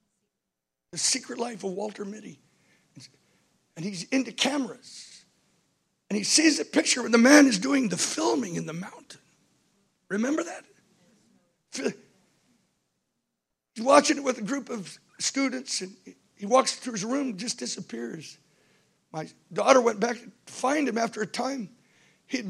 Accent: American